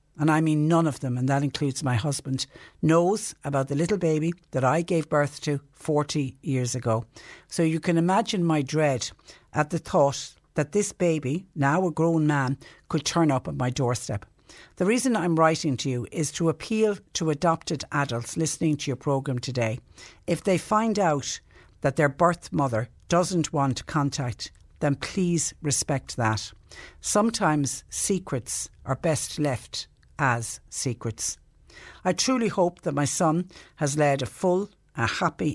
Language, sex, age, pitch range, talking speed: English, female, 60-79, 130-170 Hz, 165 wpm